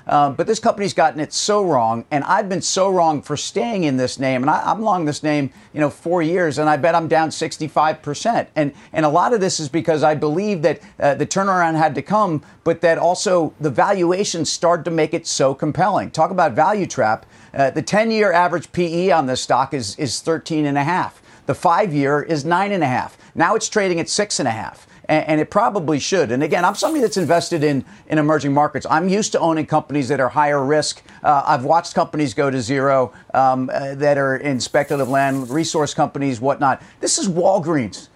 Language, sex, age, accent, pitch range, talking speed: English, male, 50-69, American, 140-175 Hz, 205 wpm